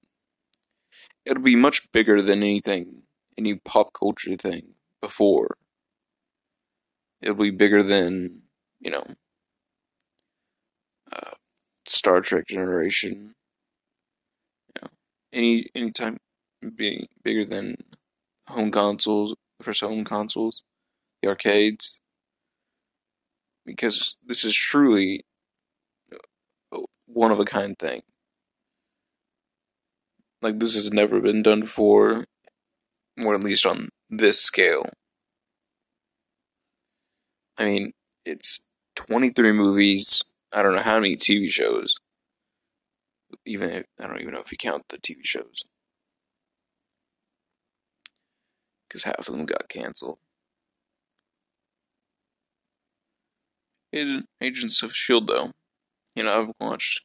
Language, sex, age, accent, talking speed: English, male, 20-39, American, 100 wpm